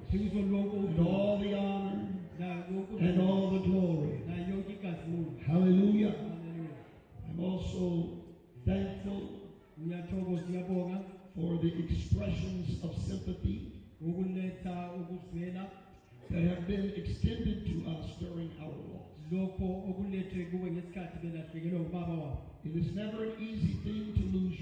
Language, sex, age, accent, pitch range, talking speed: English, male, 50-69, American, 165-190 Hz, 85 wpm